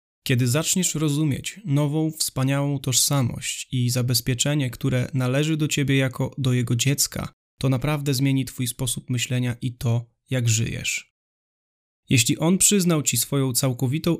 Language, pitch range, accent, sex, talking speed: Polish, 125-145 Hz, native, male, 135 wpm